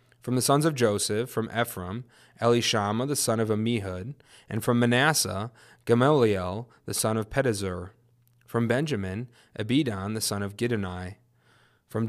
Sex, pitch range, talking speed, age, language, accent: male, 100-125 Hz, 140 wpm, 20-39, English, American